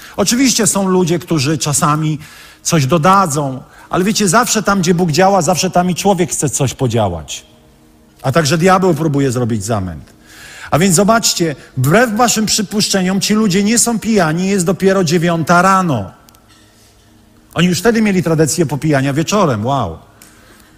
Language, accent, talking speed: Polish, native, 145 wpm